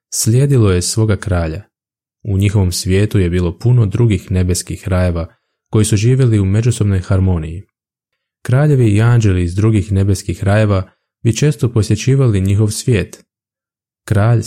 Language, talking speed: Croatian, 135 wpm